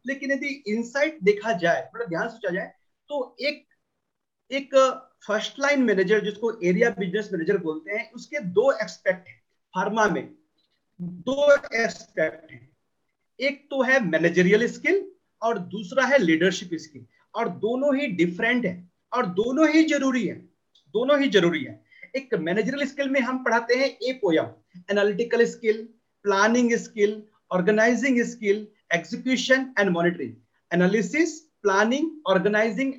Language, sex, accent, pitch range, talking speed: Hindi, male, native, 185-270 Hz, 100 wpm